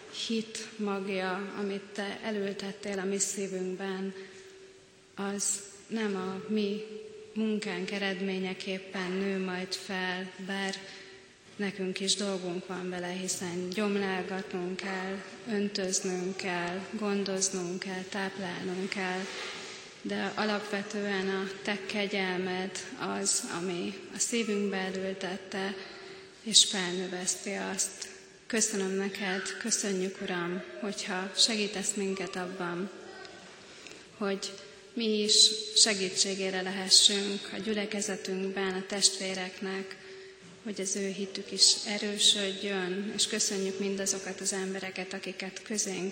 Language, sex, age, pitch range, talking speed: Hungarian, female, 30-49, 190-205 Hz, 100 wpm